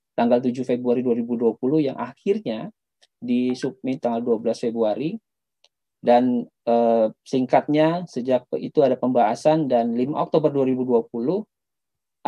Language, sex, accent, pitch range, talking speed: Indonesian, male, native, 120-150 Hz, 105 wpm